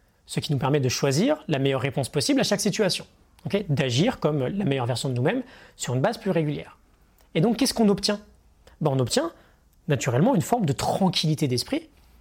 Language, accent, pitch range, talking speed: French, French, 145-195 Hz, 190 wpm